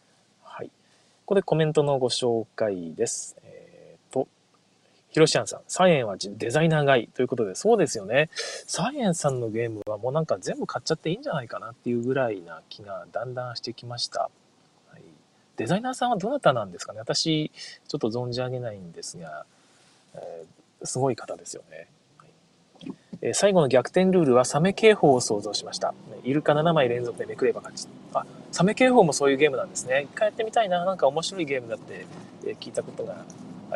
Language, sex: Japanese, male